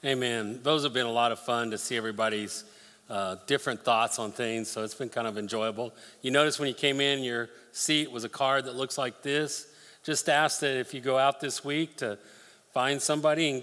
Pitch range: 115-140 Hz